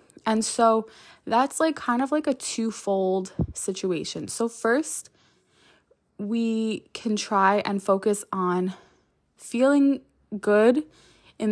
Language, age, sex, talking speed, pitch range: English, 20-39, female, 110 wpm, 185-225 Hz